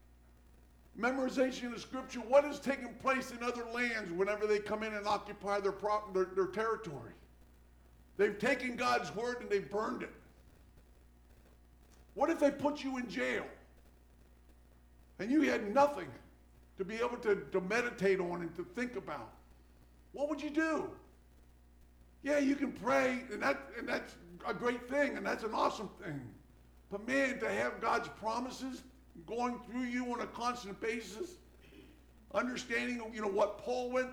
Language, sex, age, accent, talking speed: English, male, 50-69, American, 155 wpm